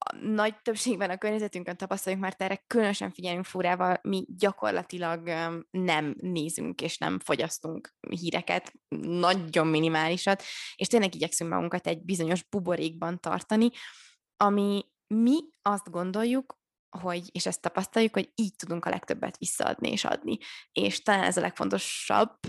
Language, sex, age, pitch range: Hungarian, female, 20-39, 180-220 Hz